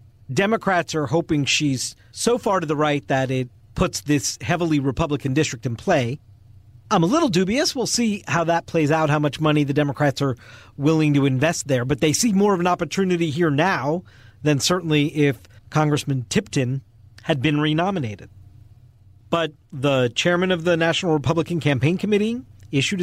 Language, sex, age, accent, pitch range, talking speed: English, male, 40-59, American, 120-180 Hz, 170 wpm